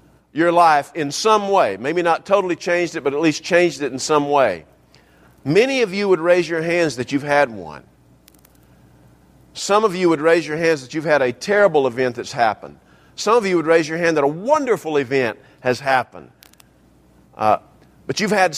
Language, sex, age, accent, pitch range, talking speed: English, male, 50-69, American, 140-190 Hz, 195 wpm